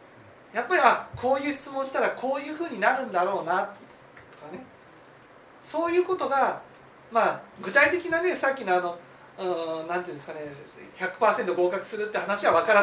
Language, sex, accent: Japanese, male, native